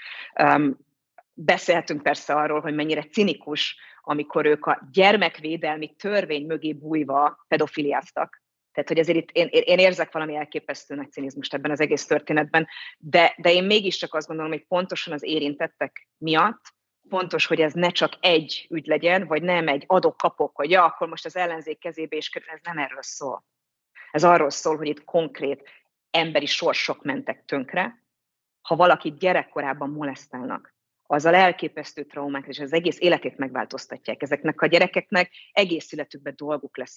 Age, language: 30-49, Hungarian